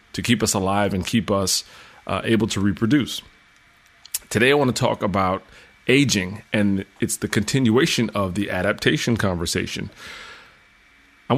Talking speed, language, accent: 140 wpm, English, American